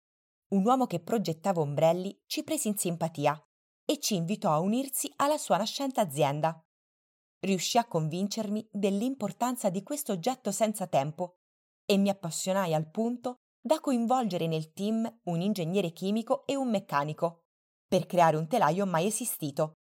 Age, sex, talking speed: 20-39, female, 145 wpm